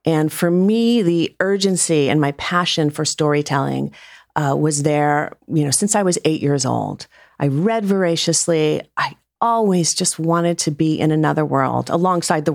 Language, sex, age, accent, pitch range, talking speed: English, female, 40-59, American, 150-195 Hz, 165 wpm